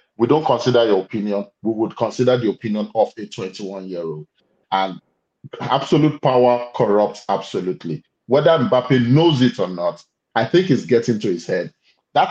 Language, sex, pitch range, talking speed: English, male, 110-135 Hz, 155 wpm